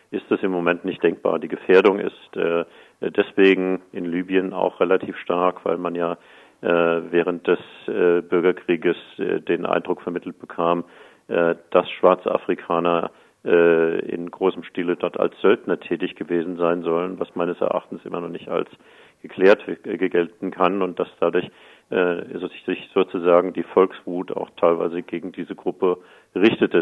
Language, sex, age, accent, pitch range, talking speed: German, male, 50-69, German, 85-90 Hz, 150 wpm